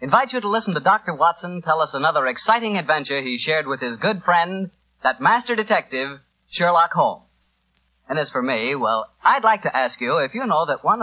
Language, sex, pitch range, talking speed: English, male, 110-180 Hz, 205 wpm